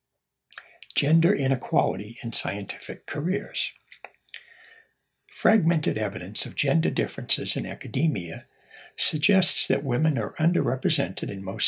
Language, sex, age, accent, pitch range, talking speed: English, male, 60-79, American, 120-155 Hz, 100 wpm